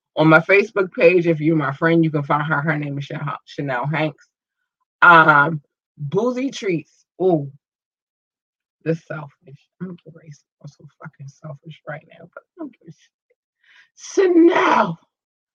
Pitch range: 145-190 Hz